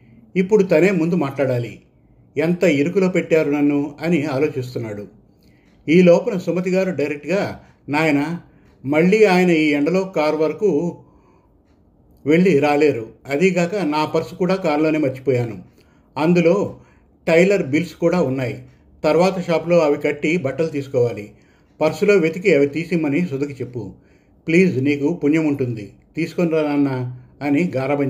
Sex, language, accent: male, Telugu, native